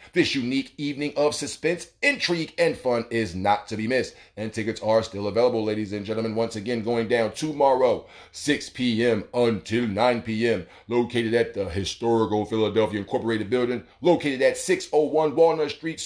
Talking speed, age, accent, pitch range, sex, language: 160 wpm, 30-49, American, 110-140 Hz, male, English